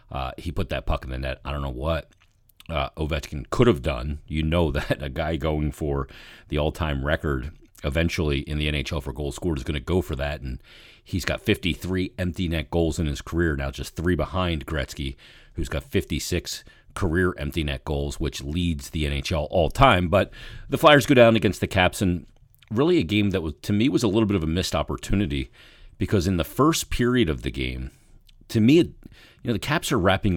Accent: American